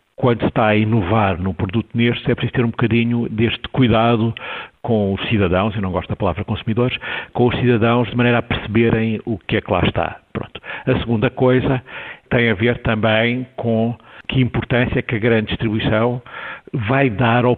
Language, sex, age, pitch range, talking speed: Portuguese, male, 60-79, 100-125 Hz, 185 wpm